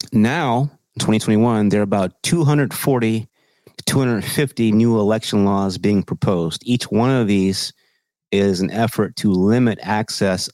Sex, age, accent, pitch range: male, 30-49, American, 100-125 Hz